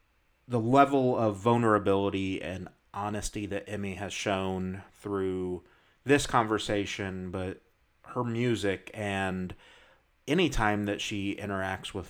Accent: American